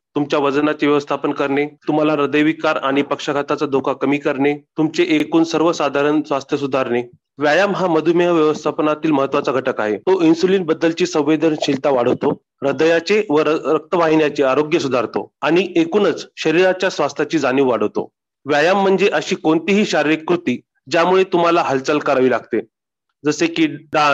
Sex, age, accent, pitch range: male, 30-49, Indian, 145-185 Hz